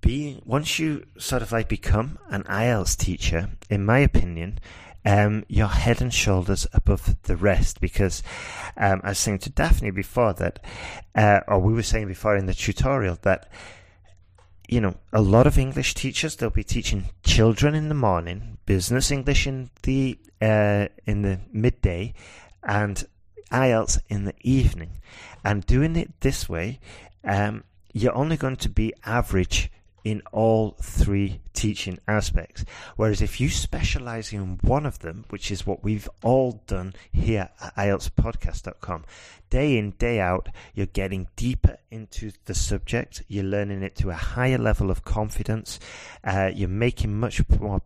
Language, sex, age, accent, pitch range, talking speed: English, male, 30-49, British, 90-110 Hz, 155 wpm